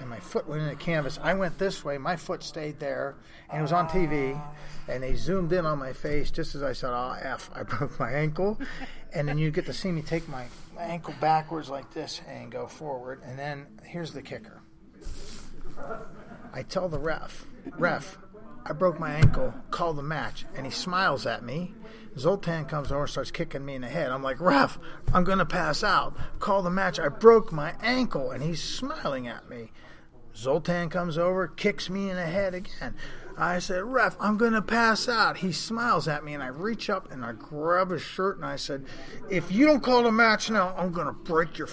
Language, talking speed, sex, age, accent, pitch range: English, 215 wpm, male, 40-59, American, 140-185 Hz